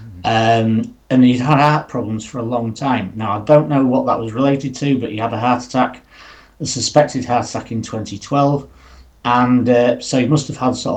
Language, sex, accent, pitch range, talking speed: English, male, British, 115-150 Hz, 220 wpm